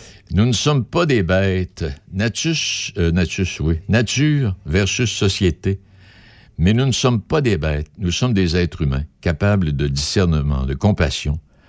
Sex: male